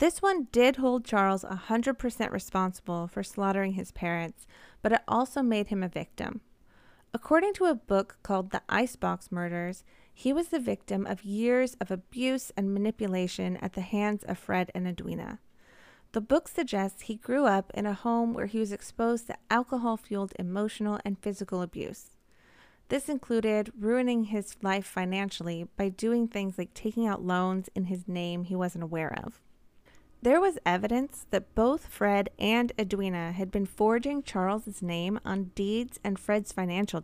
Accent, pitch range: American, 185-235 Hz